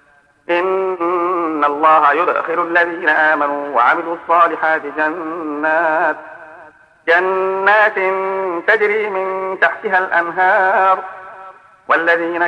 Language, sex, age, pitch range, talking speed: Arabic, male, 50-69, 160-195 Hz, 65 wpm